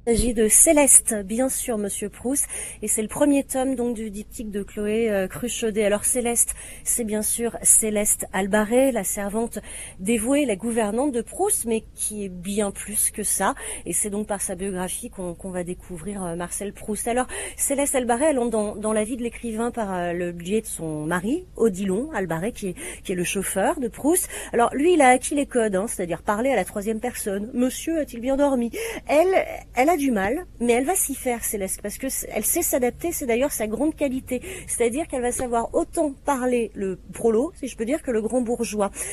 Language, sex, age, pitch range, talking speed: French, female, 40-59, 210-260 Hz, 210 wpm